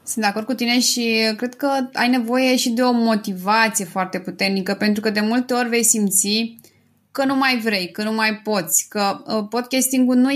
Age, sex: 20-39, female